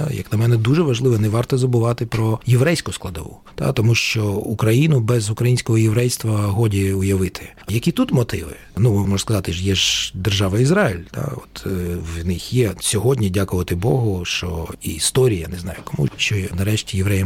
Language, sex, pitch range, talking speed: Ukrainian, male, 100-125 Hz, 170 wpm